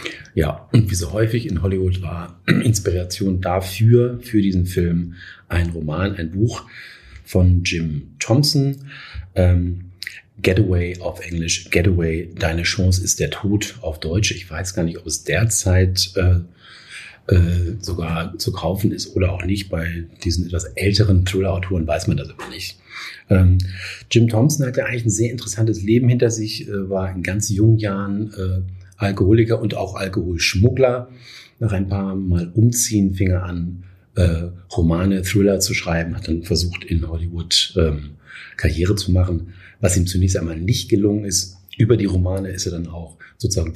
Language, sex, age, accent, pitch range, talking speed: German, male, 40-59, German, 90-105 Hz, 160 wpm